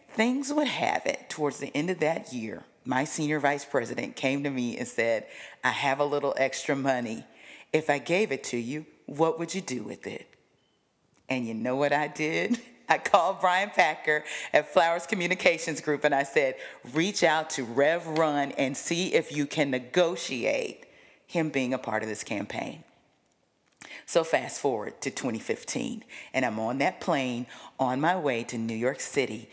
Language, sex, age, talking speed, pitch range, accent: English, female, 40-59, 180 wpm, 130-165 Hz, American